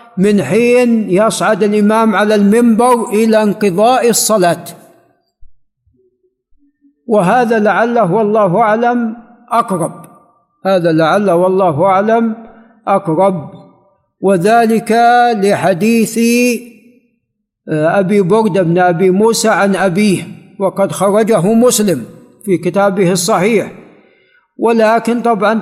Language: Arabic